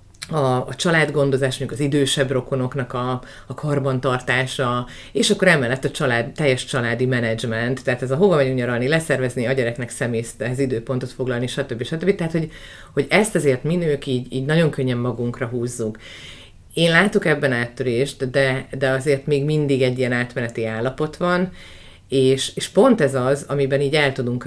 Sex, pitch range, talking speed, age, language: female, 125-145 Hz, 170 wpm, 30-49, Hungarian